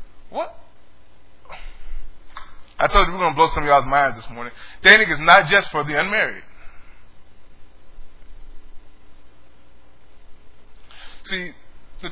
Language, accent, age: English, American, 20-39